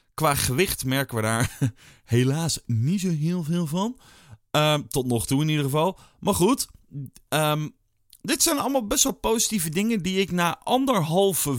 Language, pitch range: Dutch, 100-145 Hz